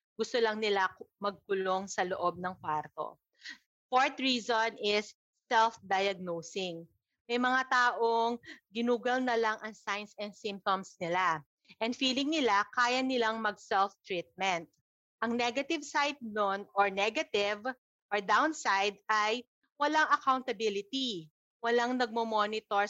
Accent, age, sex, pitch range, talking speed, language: native, 30-49, female, 200-250 Hz, 110 wpm, Filipino